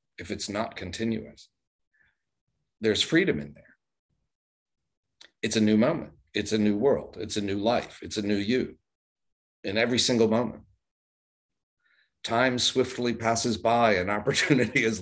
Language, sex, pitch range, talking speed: English, male, 95-120 Hz, 140 wpm